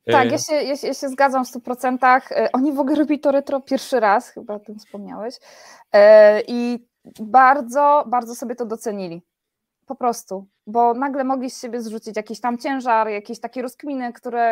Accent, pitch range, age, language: native, 215-260 Hz, 20-39, Polish